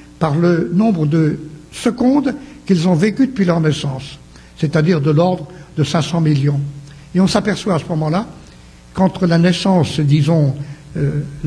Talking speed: 145 wpm